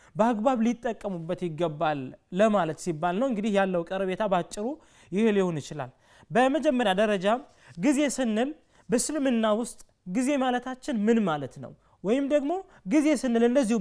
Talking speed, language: 125 wpm, Amharic